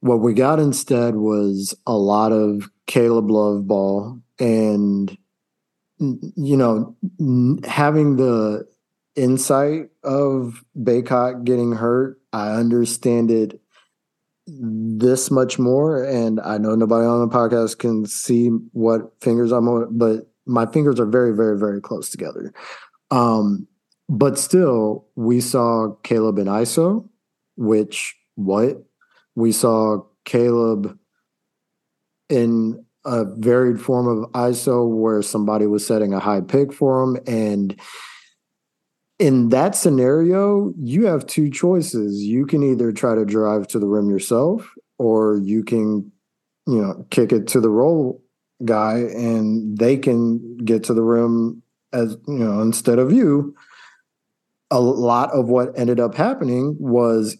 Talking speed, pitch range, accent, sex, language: 135 wpm, 110-130 Hz, American, male, English